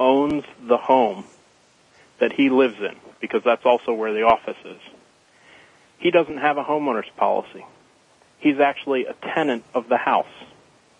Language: English